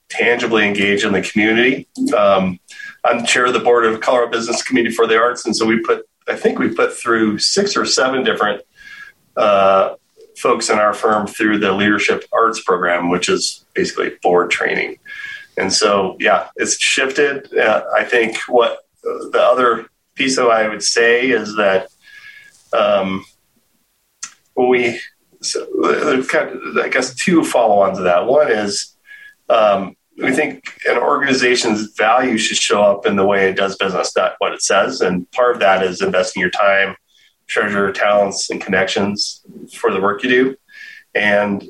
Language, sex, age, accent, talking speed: English, male, 30-49, American, 165 wpm